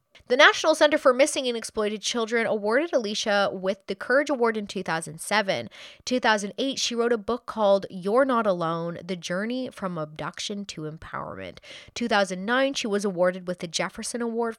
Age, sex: 20-39, female